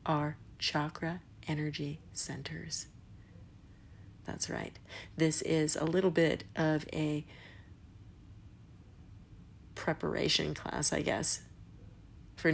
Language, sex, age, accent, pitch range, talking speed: English, female, 40-59, American, 100-160 Hz, 85 wpm